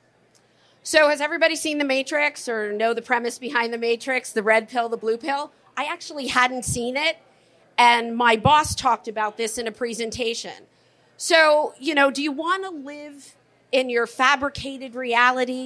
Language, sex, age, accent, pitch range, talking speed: English, female, 40-59, American, 225-275 Hz, 175 wpm